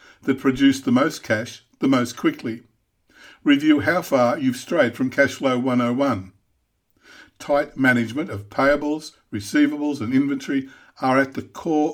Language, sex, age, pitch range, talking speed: English, male, 50-69, 115-155 Hz, 140 wpm